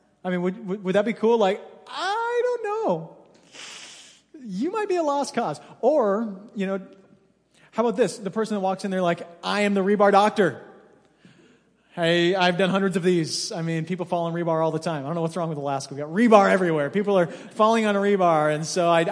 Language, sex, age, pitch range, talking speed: English, male, 30-49, 160-205 Hz, 220 wpm